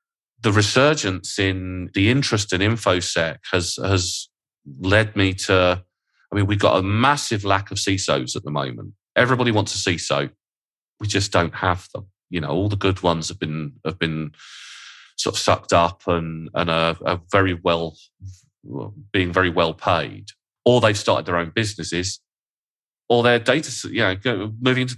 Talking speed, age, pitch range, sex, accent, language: 170 wpm, 30-49, 90-110 Hz, male, British, English